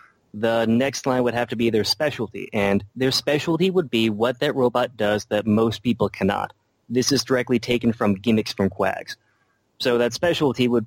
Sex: male